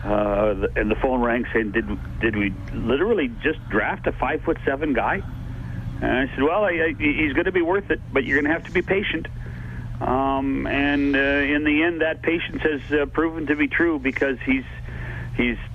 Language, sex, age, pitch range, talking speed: English, male, 60-79, 120-150 Hz, 205 wpm